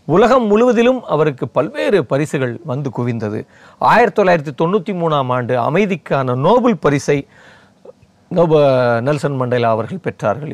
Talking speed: 110 wpm